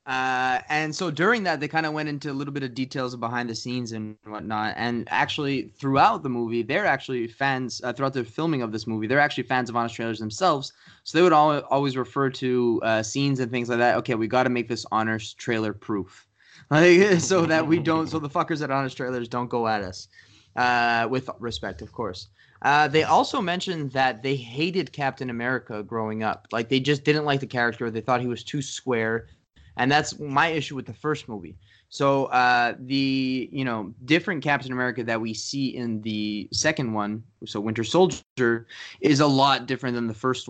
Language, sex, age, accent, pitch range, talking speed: English, male, 20-39, American, 110-140 Hz, 205 wpm